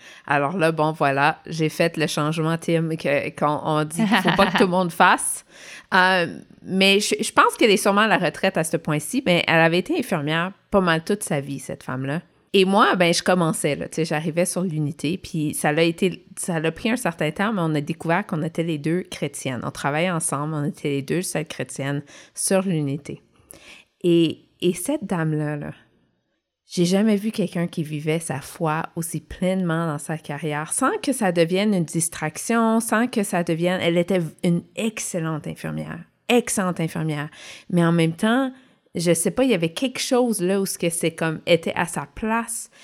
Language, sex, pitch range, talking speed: French, female, 160-195 Hz, 200 wpm